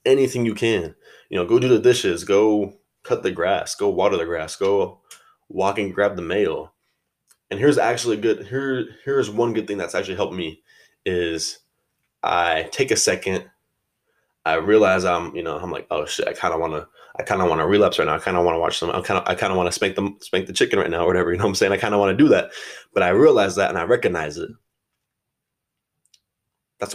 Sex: male